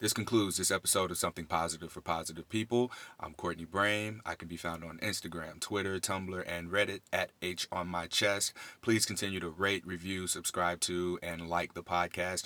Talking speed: 190 wpm